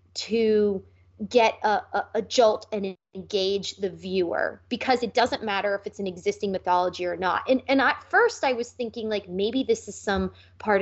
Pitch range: 190-265 Hz